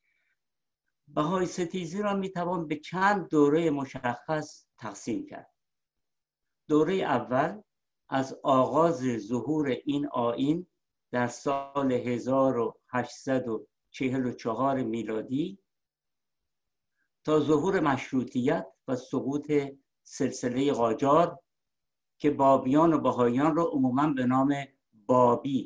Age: 60-79